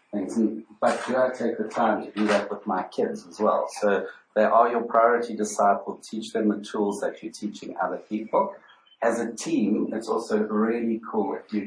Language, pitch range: English, 100-110 Hz